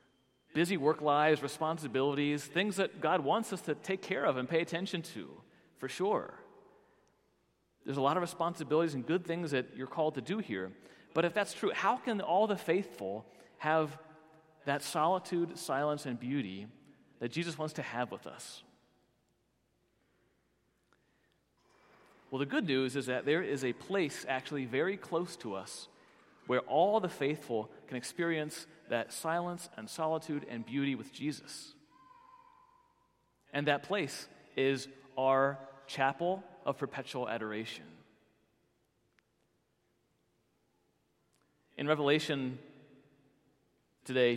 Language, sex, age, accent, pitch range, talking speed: English, male, 40-59, American, 135-170 Hz, 130 wpm